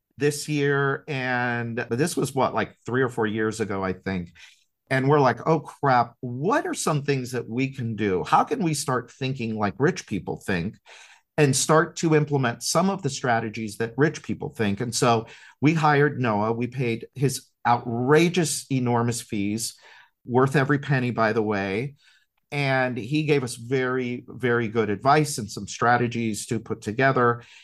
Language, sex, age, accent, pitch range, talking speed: English, male, 50-69, American, 115-145 Hz, 170 wpm